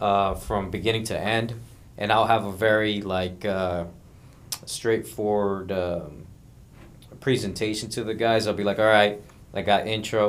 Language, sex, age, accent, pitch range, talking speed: English, male, 20-39, American, 95-115 Hz, 150 wpm